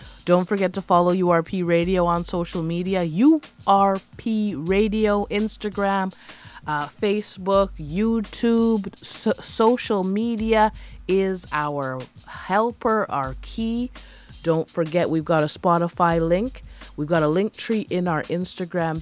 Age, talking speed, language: 30-49, 120 wpm, English